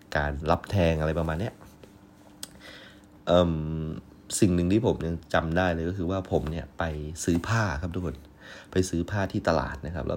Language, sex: Thai, male